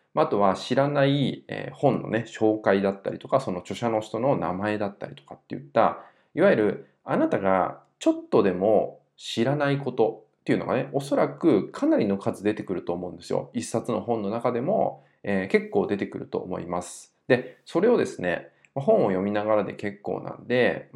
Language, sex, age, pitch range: Japanese, male, 20-39, 100-150 Hz